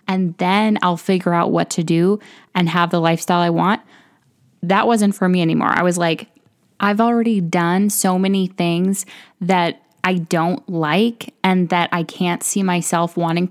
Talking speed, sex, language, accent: 175 wpm, female, English, American